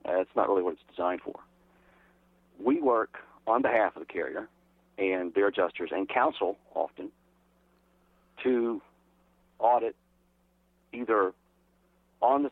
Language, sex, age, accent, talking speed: English, male, 50-69, American, 125 wpm